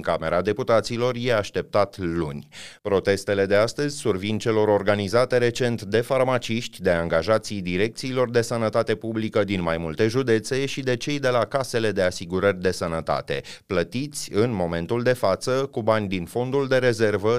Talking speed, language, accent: 155 wpm, Romanian, native